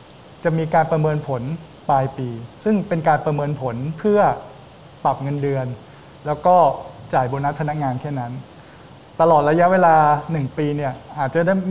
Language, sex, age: Thai, male, 20-39